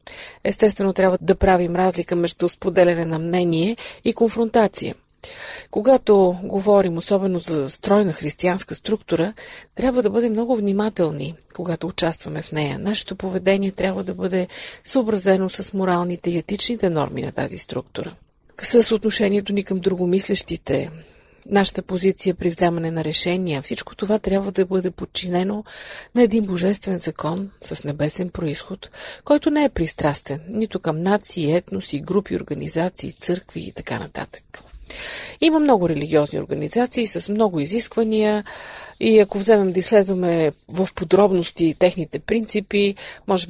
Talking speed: 130 wpm